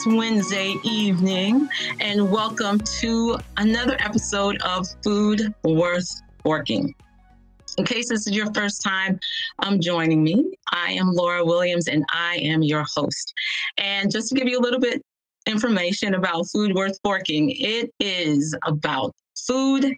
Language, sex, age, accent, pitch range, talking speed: English, female, 30-49, American, 175-225 Hz, 145 wpm